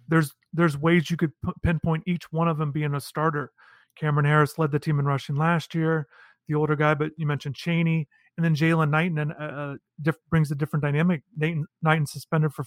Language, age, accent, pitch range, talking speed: English, 30-49, American, 150-165 Hz, 210 wpm